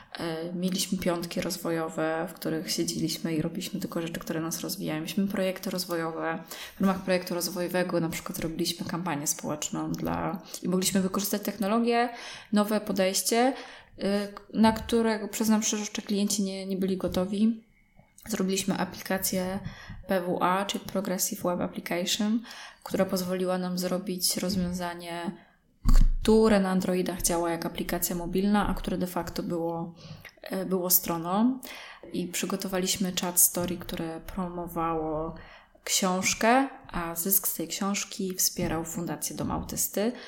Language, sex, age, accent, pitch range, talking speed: Polish, female, 20-39, native, 170-195 Hz, 125 wpm